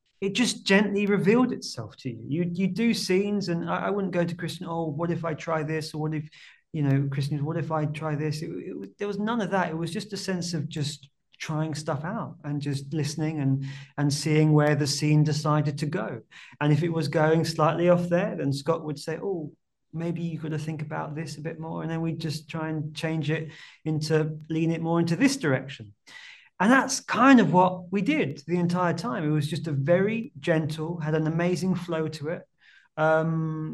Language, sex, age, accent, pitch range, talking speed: English, male, 30-49, British, 140-170 Hz, 225 wpm